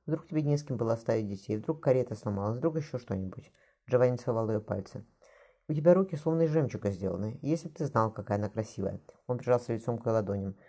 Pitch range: 105-140 Hz